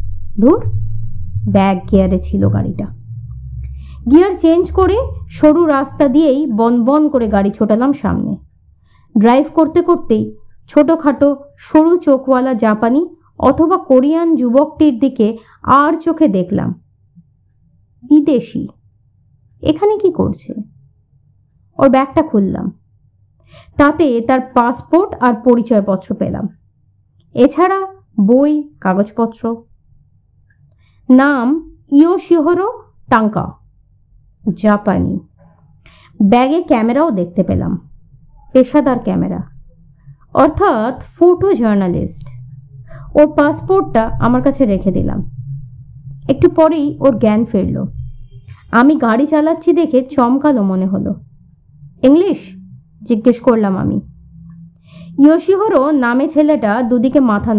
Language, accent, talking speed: Bengali, native, 90 wpm